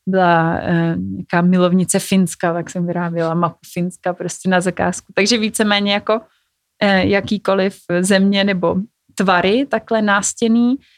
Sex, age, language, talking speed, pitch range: female, 20-39, Czech, 125 wpm, 180-210 Hz